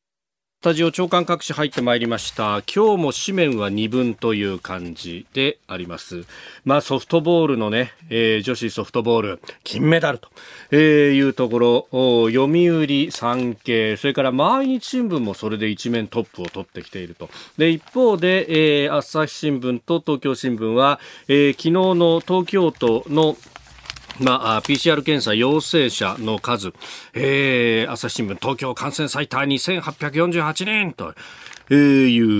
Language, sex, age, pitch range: Japanese, male, 40-59, 105-155 Hz